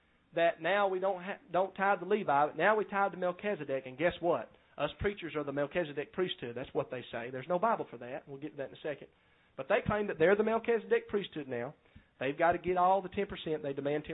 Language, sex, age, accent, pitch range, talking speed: English, male, 40-59, American, 165-225 Hz, 245 wpm